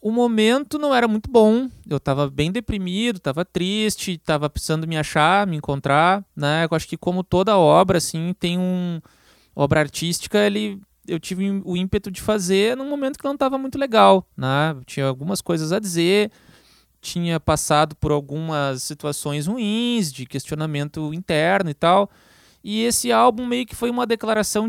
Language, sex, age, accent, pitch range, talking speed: Portuguese, male, 20-39, Brazilian, 145-205 Hz, 170 wpm